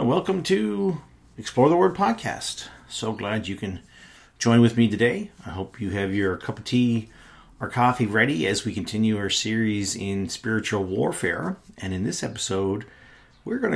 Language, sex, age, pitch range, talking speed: English, male, 40-59, 95-110 Hz, 170 wpm